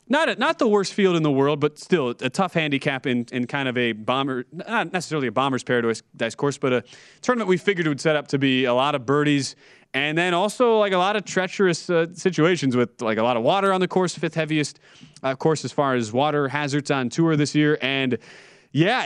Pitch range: 125-160 Hz